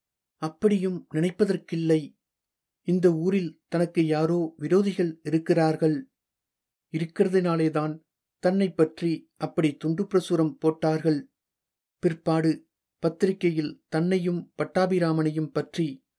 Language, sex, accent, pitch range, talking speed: Tamil, male, native, 160-185 Hz, 70 wpm